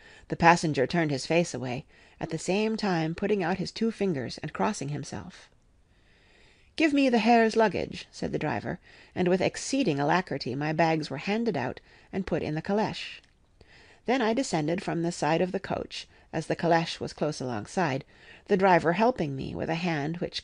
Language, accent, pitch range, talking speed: English, American, 160-215 Hz, 185 wpm